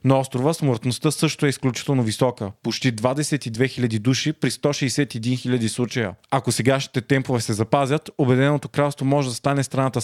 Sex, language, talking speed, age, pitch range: male, Bulgarian, 155 wpm, 30-49, 125-145 Hz